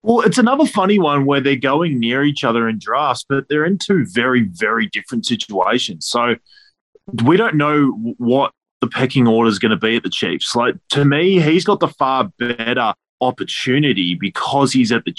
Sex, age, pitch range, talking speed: male, 20-39, 110-145 Hz, 195 wpm